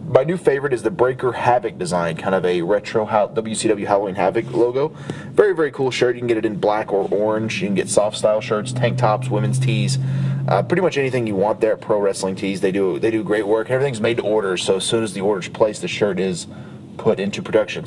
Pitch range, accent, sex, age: 105-145 Hz, American, male, 30-49